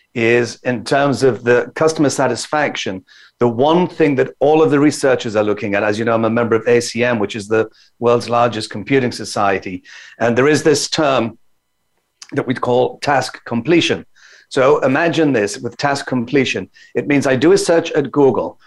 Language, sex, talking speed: English, male, 185 wpm